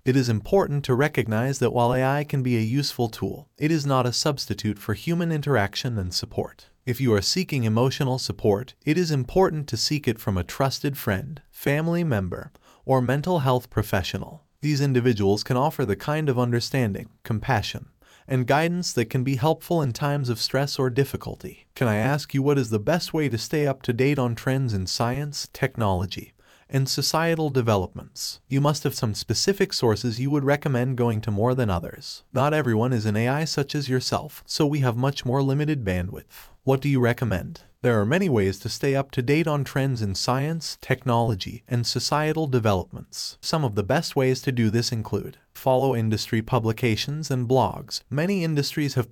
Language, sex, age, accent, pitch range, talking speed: English, male, 30-49, American, 115-145 Hz, 190 wpm